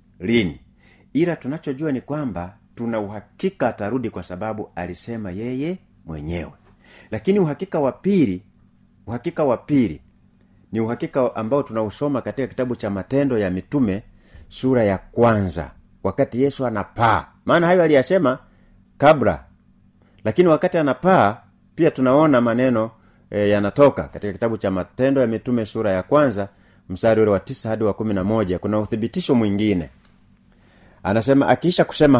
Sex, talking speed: male, 130 wpm